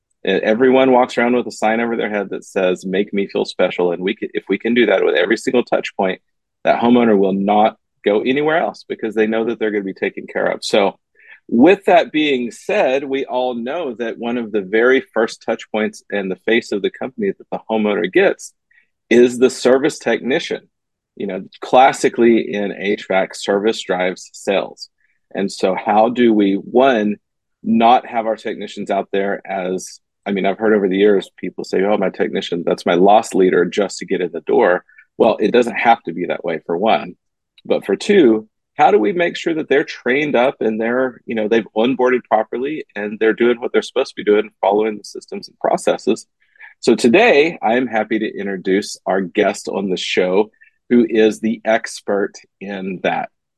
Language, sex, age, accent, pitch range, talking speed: English, male, 40-59, American, 100-120 Hz, 200 wpm